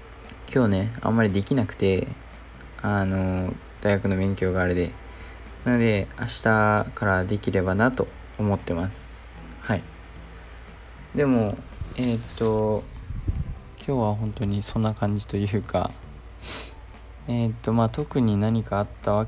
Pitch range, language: 90-115 Hz, Japanese